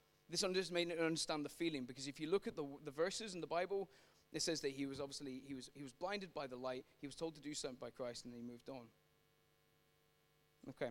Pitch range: 140-180 Hz